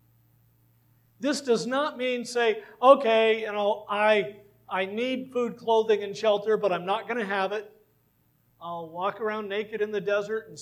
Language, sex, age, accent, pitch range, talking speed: English, male, 50-69, American, 185-250 Hz, 170 wpm